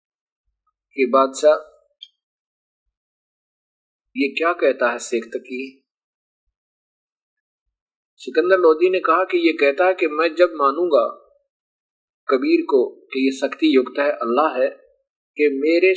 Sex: male